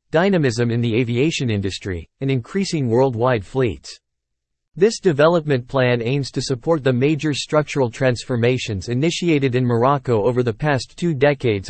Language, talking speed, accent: English, 140 wpm, American